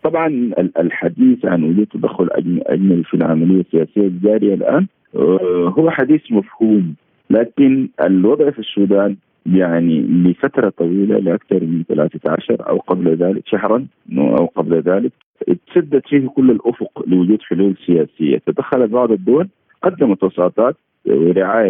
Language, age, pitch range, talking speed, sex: Arabic, 50-69, 95-130 Hz, 120 wpm, male